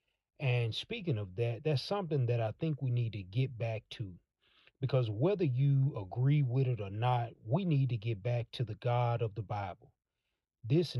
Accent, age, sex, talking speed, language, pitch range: American, 40-59, male, 190 wpm, English, 115-150 Hz